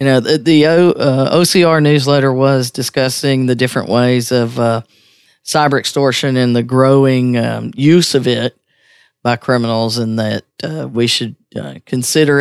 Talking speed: 125 wpm